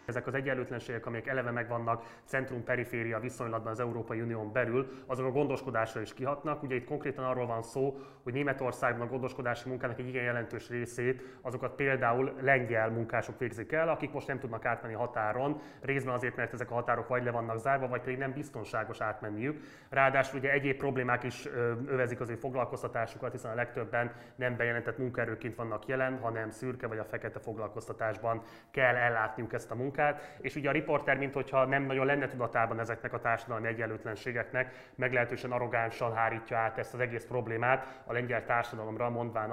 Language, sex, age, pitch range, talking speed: Hungarian, male, 20-39, 115-130 Hz, 170 wpm